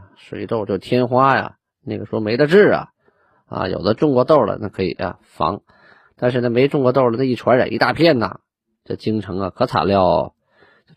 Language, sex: Chinese, male